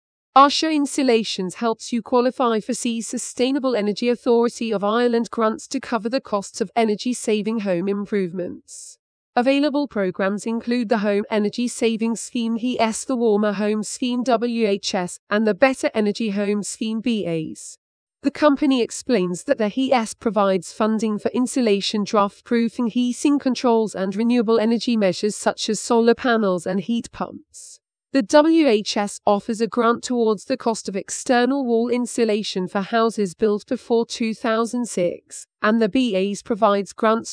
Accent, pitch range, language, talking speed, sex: British, 210-245 Hz, English, 140 wpm, female